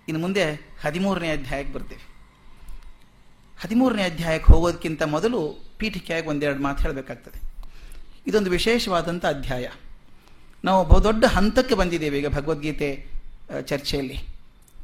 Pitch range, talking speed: 145-215 Hz, 95 wpm